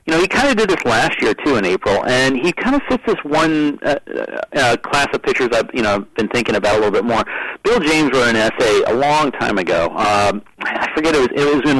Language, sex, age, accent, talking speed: English, male, 40-59, American, 265 wpm